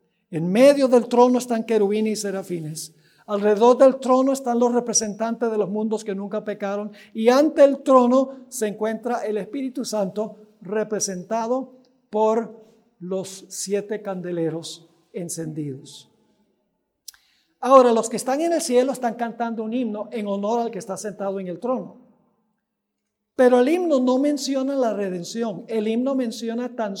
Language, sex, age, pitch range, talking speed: Spanish, male, 60-79, 200-245 Hz, 145 wpm